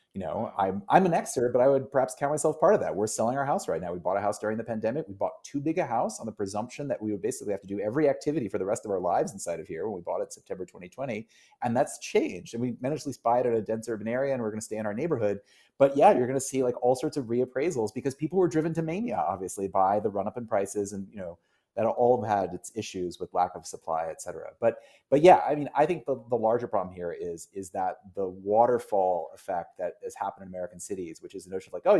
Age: 30-49